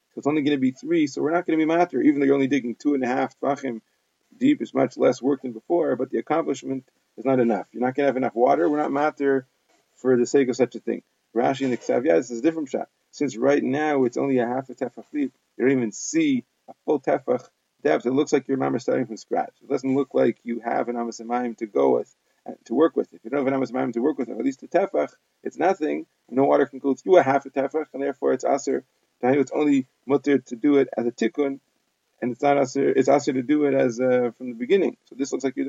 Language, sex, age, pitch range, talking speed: English, male, 30-49, 125-150 Hz, 265 wpm